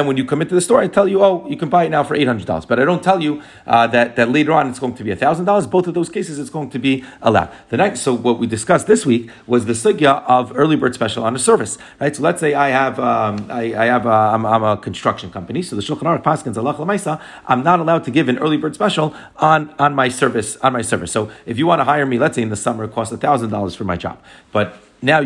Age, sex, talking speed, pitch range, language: 30-49, male, 275 wpm, 115-150 Hz, English